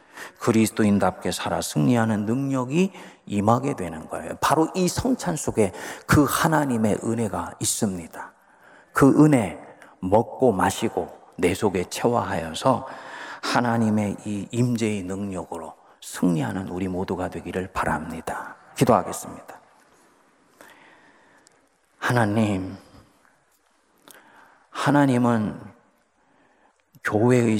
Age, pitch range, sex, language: 40-59, 95-120 Hz, male, Korean